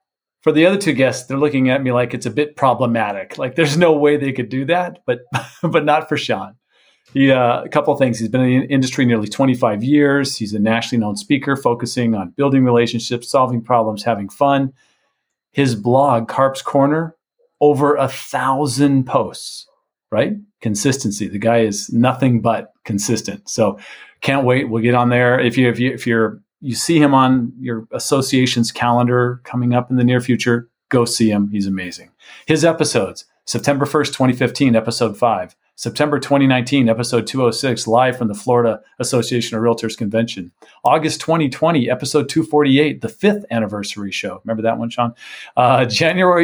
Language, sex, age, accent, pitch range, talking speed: English, male, 40-59, American, 115-145 Hz, 175 wpm